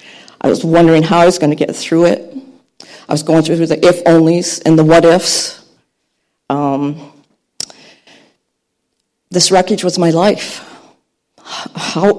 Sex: female